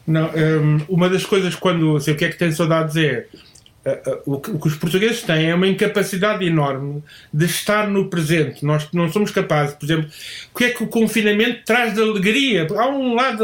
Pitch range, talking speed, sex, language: 165-250 Hz, 220 wpm, male, Portuguese